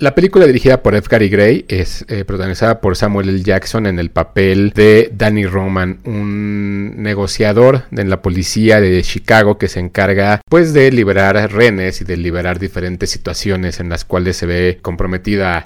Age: 30-49